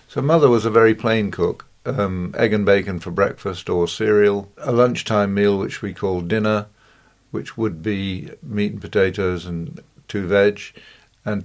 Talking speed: 170 wpm